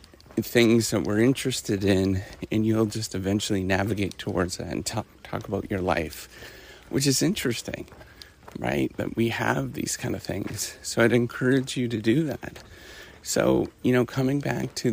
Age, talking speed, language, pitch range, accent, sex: 30-49, 170 wpm, English, 100-125 Hz, American, male